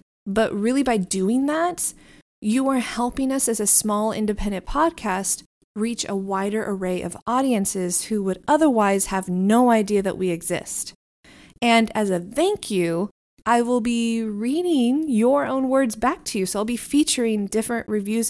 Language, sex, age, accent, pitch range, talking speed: English, female, 20-39, American, 195-265 Hz, 165 wpm